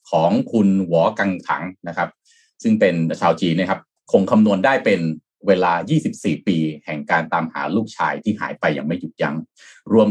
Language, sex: Thai, male